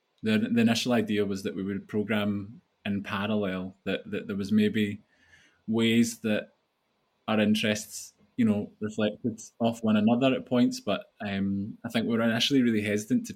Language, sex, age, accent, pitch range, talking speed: English, male, 20-39, British, 100-135 Hz, 170 wpm